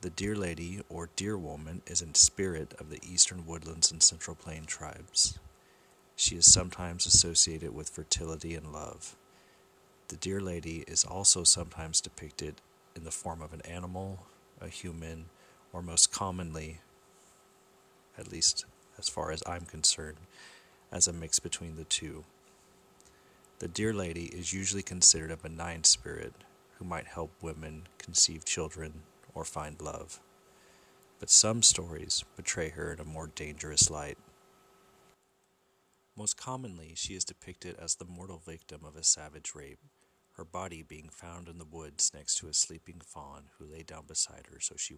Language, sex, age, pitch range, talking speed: English, male, 40-59, 80-90 Hz, 155 wpm